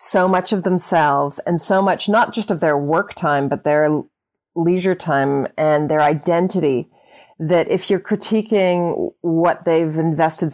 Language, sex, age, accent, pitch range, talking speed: English, female, 30-49, American, 155-190 Hz, 155 wpm